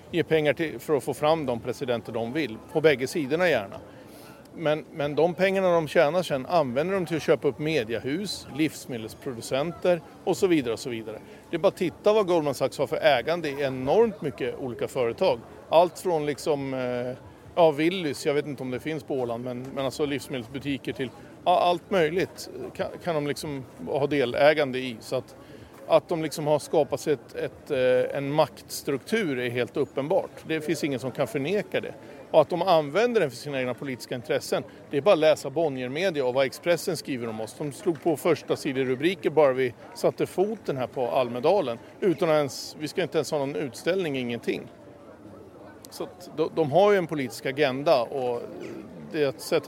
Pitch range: 130-165 Hz